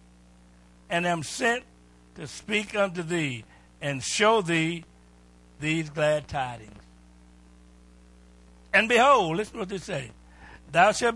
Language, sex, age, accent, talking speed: English, male, 60-79, American, 120 wpm